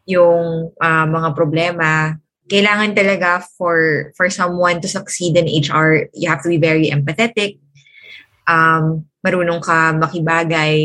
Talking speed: 125 wpm